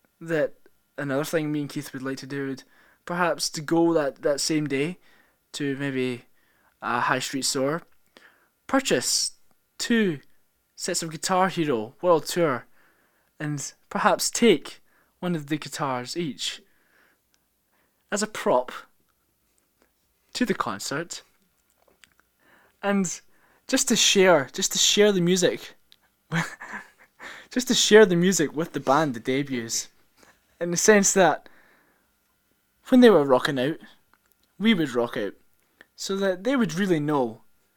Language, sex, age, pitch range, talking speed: English, male, 20-39, 140-180 Hz, 135 wpm